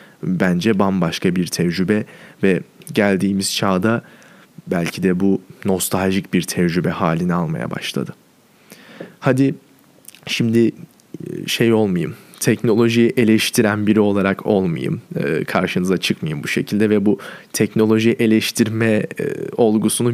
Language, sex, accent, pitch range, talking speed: Turkish, male, native, 105-125 Hz, 100 wpm